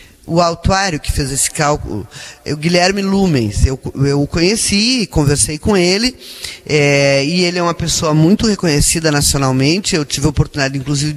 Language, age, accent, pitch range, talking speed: Portuguese, 20-39, Brazilian, 135-190 Hz, 160 wpm